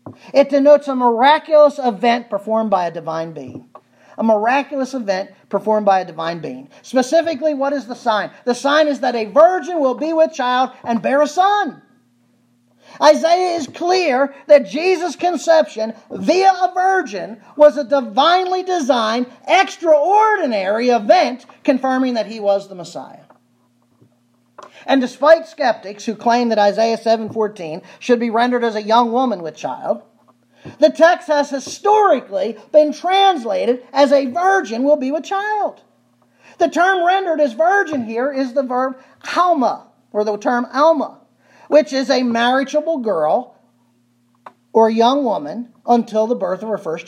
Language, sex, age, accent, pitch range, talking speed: English, male, 40-59, American, 215-305 Hz, 150 wpm